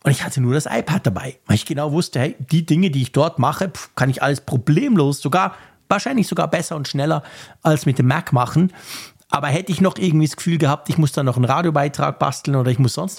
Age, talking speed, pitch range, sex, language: 50-69, 235 wpm, 130-165 Hz, male, German